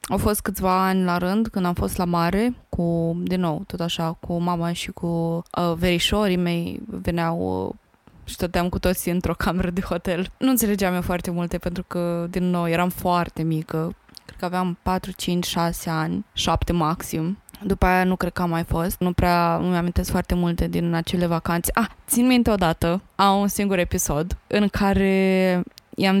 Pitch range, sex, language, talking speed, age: 175-205 Hz, female, Romanian, 190 wpm, 20-39